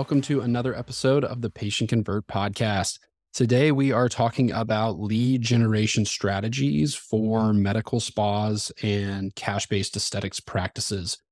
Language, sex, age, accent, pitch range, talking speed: English, male, 20-39, American, 100-115 Hz, 125 wpm